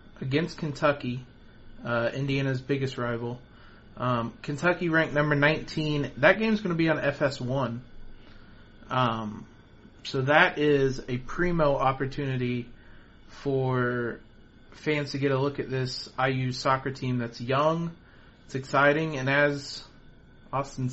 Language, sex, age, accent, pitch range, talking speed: English, male, 30-49, American, 120-140 Hz, 125 wpm